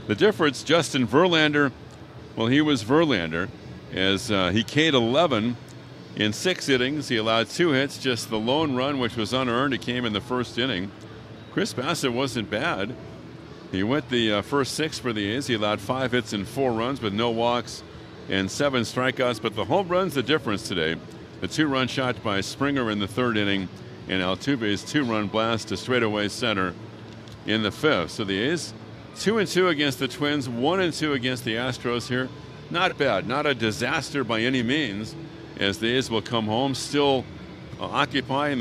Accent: American